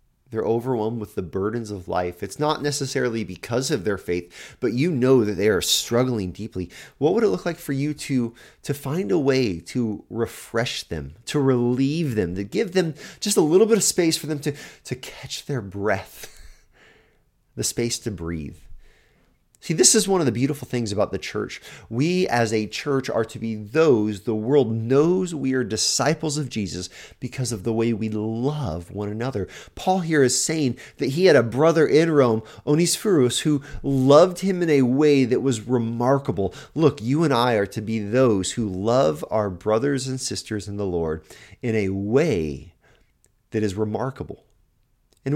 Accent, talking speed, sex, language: American, 185 wpm, male, English